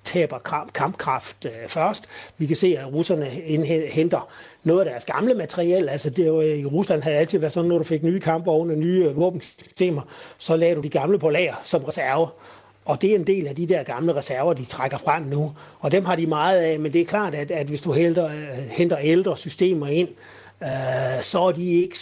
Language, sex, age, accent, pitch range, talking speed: Danish, male, 30-49, native, 140-170 Hz, 225 wpm